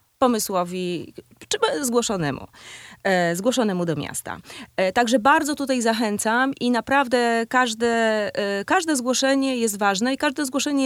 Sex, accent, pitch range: female, native, 185-250 Hz